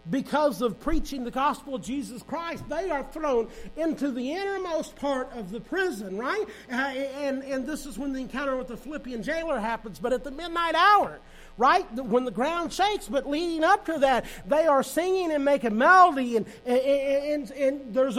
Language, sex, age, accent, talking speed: English, male, 50-69, American, 190 wpm